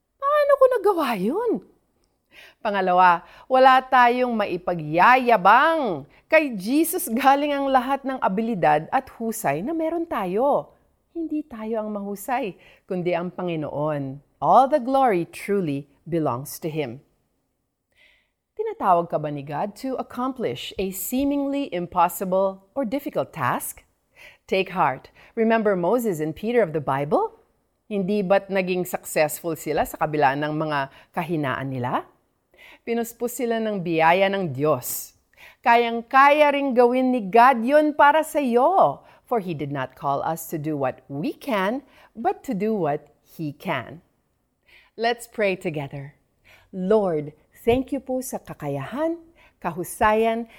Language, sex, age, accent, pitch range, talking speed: Filipino, female, 40-59, native, 165-260 Hz, 130 wpm